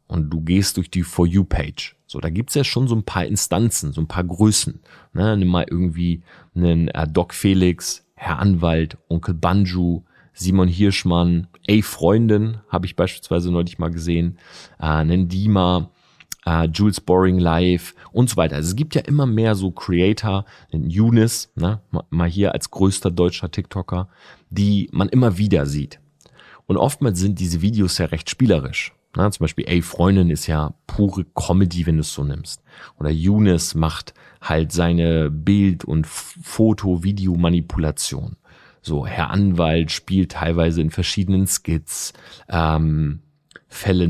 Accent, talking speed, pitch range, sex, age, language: German, 155 wpm, 80-100 Hz, male, 30-49, German